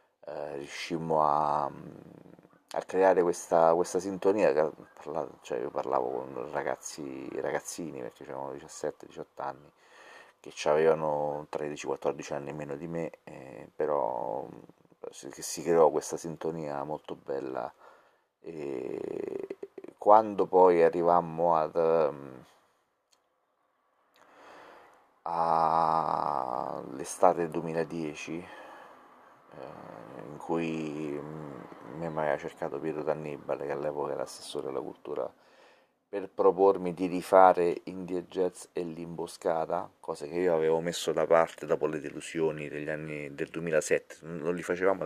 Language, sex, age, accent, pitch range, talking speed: Italian, male, 30-49, native, 80-95 Hz, 105 wpm